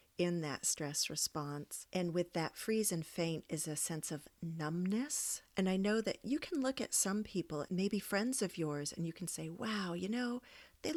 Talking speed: 200 wpm